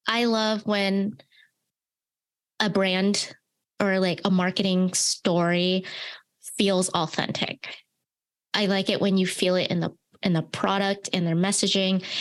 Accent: American